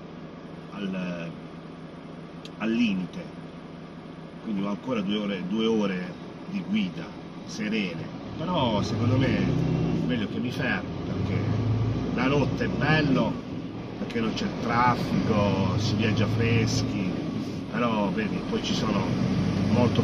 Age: 40-59